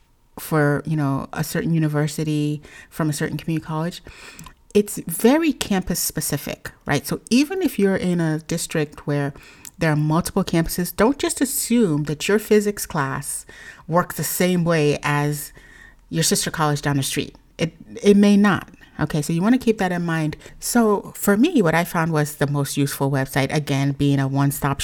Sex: female